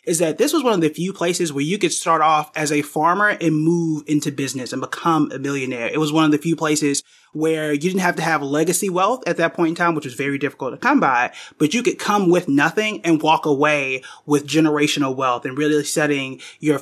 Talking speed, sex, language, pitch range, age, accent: 245 wpm, male, English, 145-165 Hz, 30-49, American